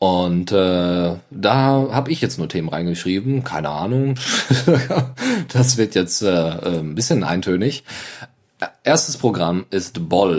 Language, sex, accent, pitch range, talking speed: German, male, German, 90-125 Hz, 125 wpm